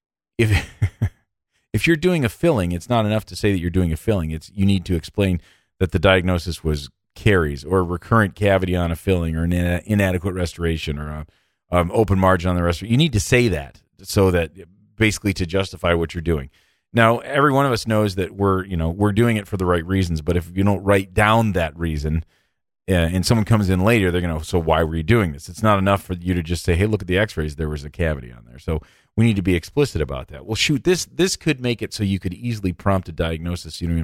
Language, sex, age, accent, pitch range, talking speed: English, male, 40-59, American, 85-105 Hz, 245 wpm